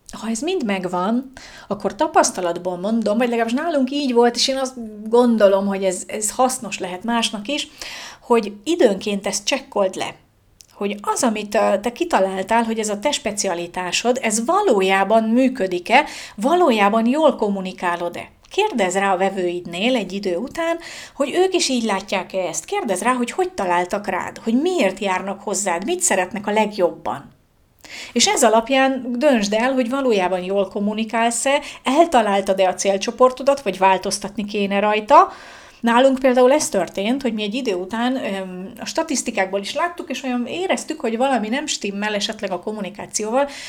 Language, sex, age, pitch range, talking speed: Hungarian, female, 40-59, 195-255 Hz, 150 wpm